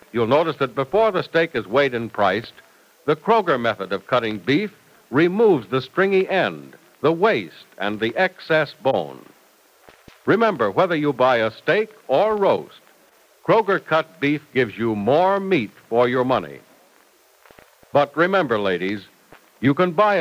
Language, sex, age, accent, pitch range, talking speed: English, male, 60-79, American, 120-185 Hz, 150 wpm